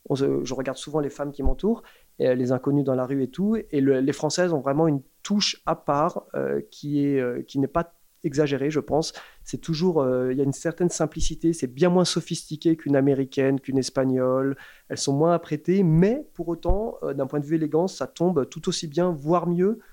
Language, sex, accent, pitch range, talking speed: French, male, French, 135-165 Hz, 200 wpm